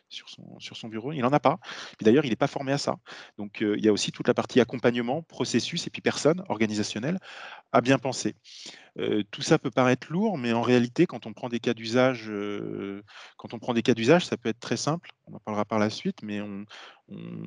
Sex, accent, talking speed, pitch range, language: male, French, 245 wpm, 105-135 Hz, French